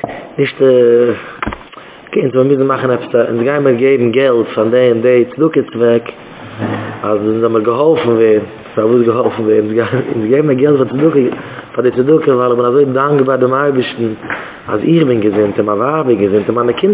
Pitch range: 120-155 Hz